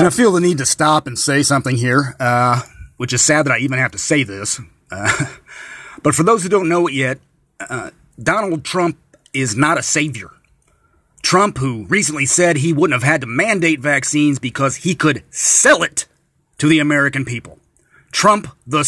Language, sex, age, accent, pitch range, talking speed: English, male, 30-49, American, 130-165 Hz, 190 wpm